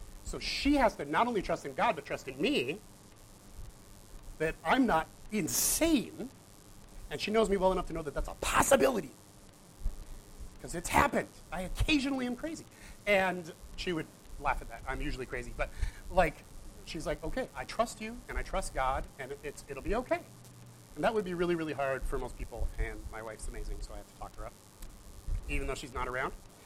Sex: male